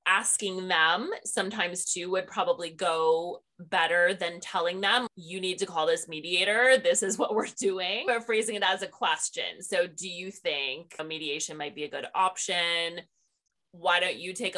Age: 20-39